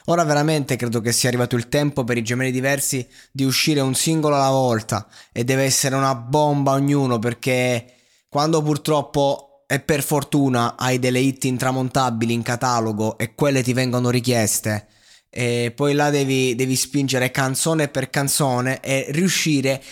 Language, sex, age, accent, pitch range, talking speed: Italian, male, 20-39, native, 125-160 Hz, 155 wpm